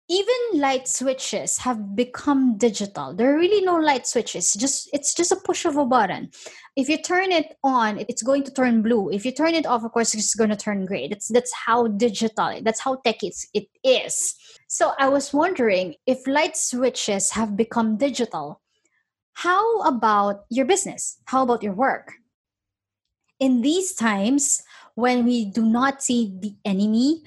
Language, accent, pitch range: English, Filipino, 215-275 Hz